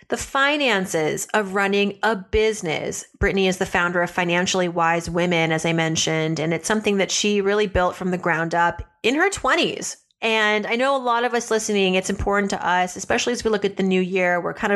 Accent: American